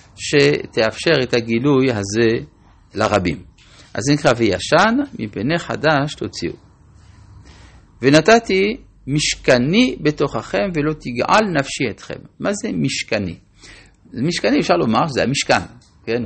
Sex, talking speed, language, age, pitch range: male, 105 wpm, Hebrew, 50-69, 100-155 Hz